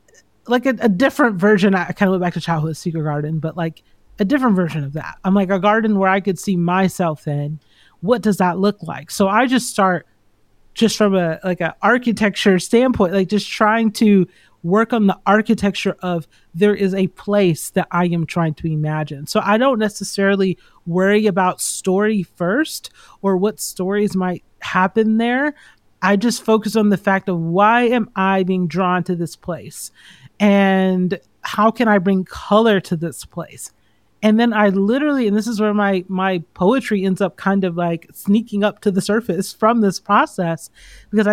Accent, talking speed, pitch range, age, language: American, 185 wpm, 175-215 Hz, 30-49, English